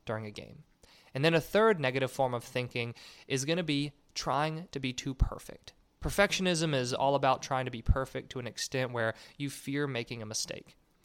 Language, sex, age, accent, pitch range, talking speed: English, male, 20-39, American, 115-150 Hz, 200 wpm